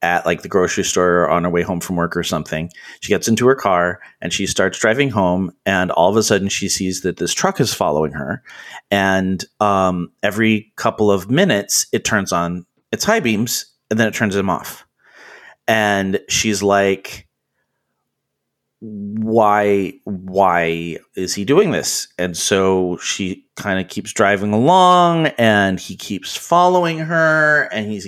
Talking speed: 170 wpm